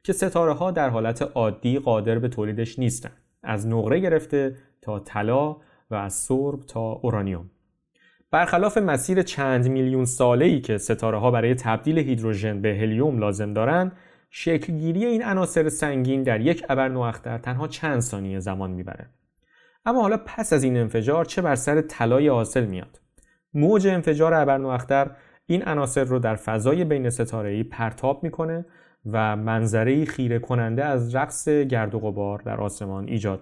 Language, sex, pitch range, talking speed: Persian, male, 110-150 Hz, 150 wpm